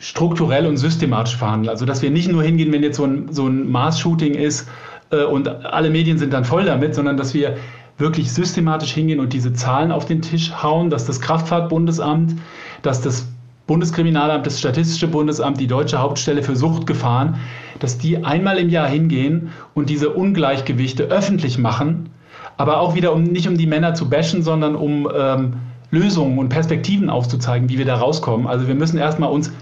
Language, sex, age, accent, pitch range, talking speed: German, male, 50-69, German, 135-165 Hz, 180 wpm